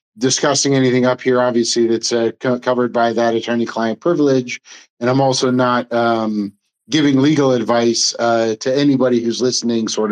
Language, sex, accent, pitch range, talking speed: English, male, American, 110-130 Hz, 155 wpm